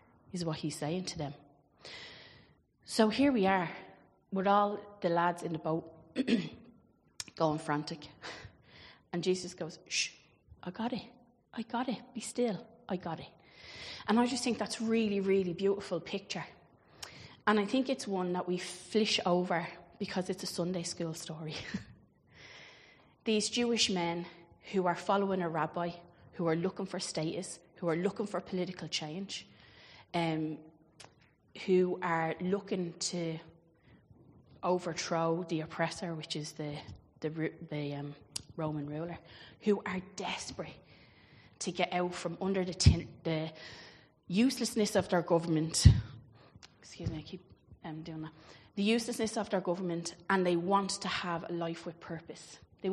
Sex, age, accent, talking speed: female, 30-49, Irish, 145 wpm